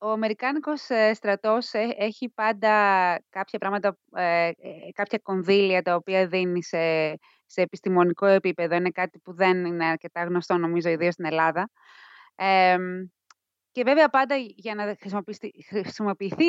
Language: Greek